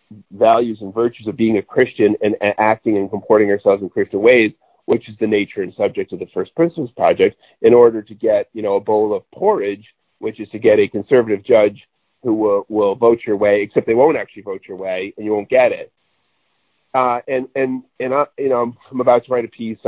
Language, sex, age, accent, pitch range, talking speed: English, male, 40-59, American, 110-155 Hz, 230 wpm